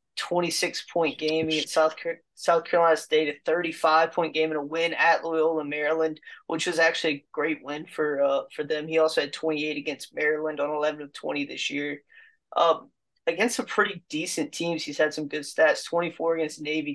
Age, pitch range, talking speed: 20-39, 150-190 Hz, 180 wpm